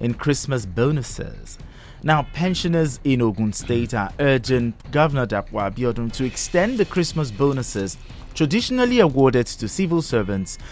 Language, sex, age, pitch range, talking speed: English, male, 30-49, 115-160 Hz, 130 wpm